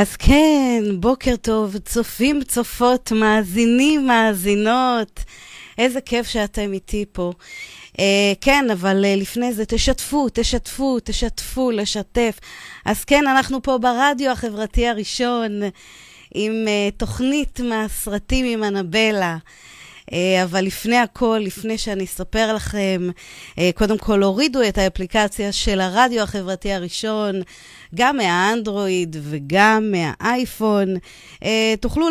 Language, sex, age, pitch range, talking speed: Hebrew, female, 30-49, 205-255 Hz, 105 wpm